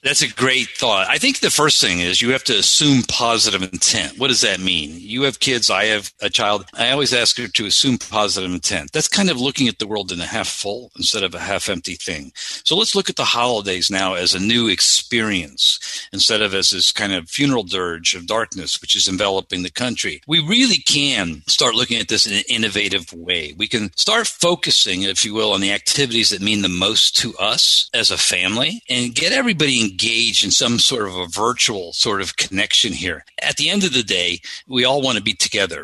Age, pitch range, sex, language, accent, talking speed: 50-69, 100-145 Hz, male, English, American, 225 wpm